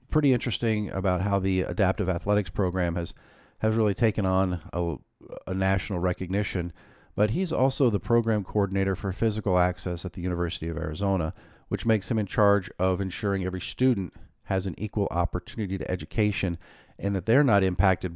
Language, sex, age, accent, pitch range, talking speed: English, male, 50-69, American, 90-110 Hz, 170 wpm